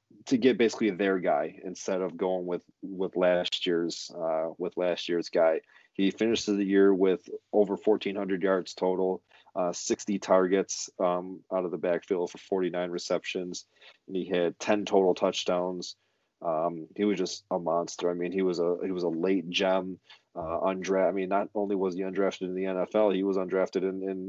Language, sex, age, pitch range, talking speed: English, male, 30-49, 90-100 Hz, 190 wpm